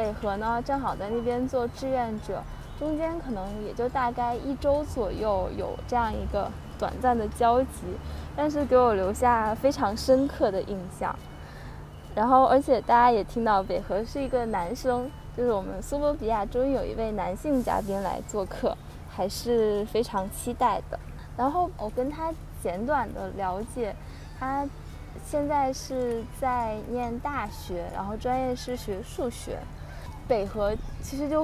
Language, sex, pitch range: Chinese, female, 230-275 Hz